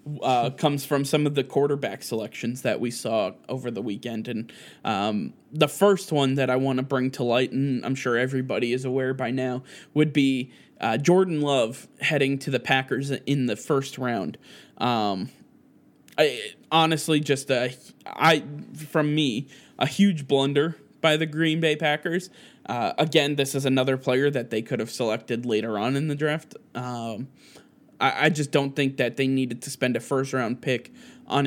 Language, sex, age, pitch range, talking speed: English, male, 20-39, 125-150 Hz, 180 wpm